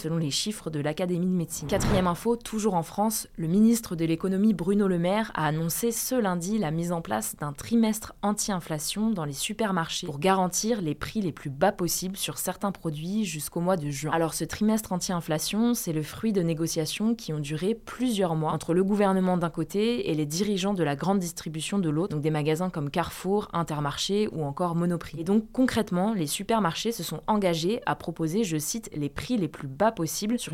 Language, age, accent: French, 20-39, French